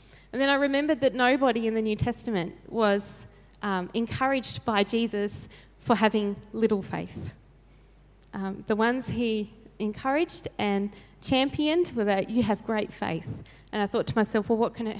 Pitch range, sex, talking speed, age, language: 185-225 Hz, female, 165 wpm, 20-39, English